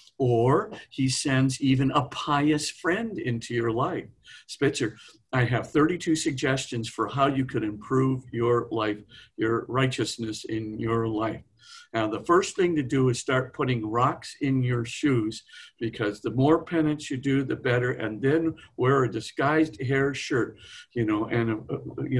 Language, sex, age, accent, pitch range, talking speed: English, male, 50-69, American, 115-150 Hz, 160 wpm